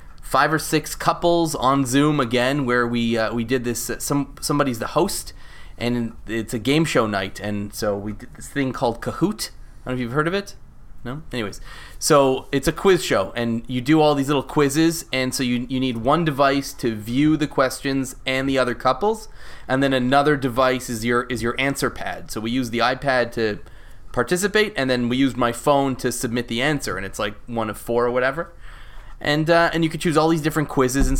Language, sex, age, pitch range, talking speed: English, male, 20-39, 115-140 Hz, 220 wpm